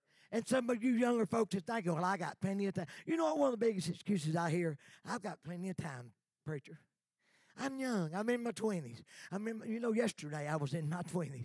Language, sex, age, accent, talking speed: English, male, 40-59, American, 235 wpm